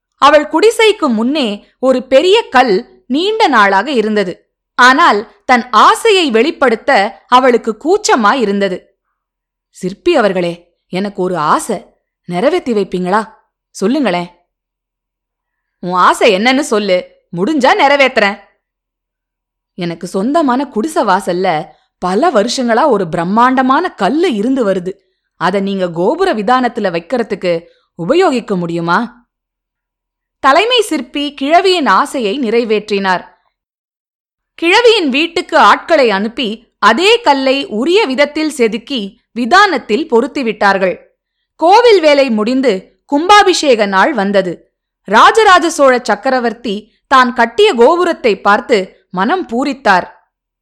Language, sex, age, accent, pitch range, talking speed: Tamil, female, 20-39, native, 195-285 Hz, 90 wpm